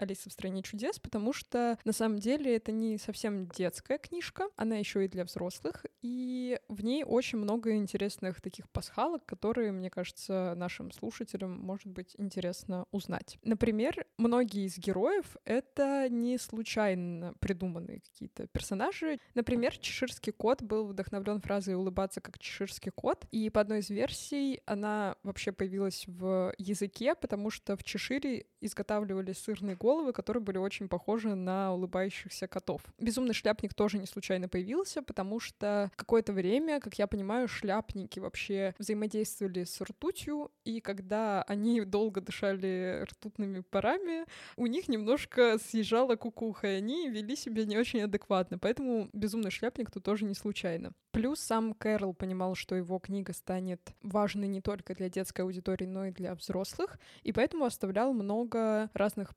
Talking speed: 150 wpm